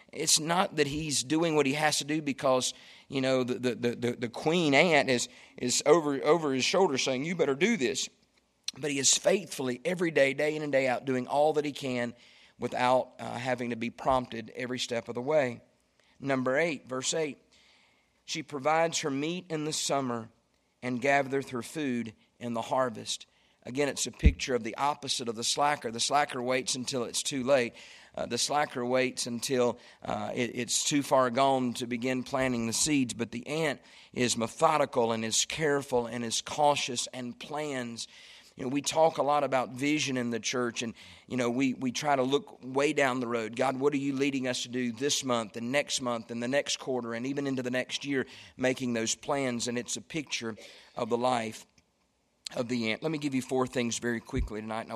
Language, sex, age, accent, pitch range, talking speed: English, male, 50-69, American, 120-145 Hz, 205 wpm